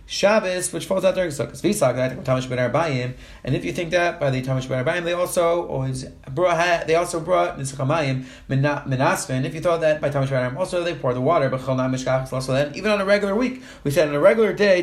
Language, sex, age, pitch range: English, male, 30-49, 140-175 Hz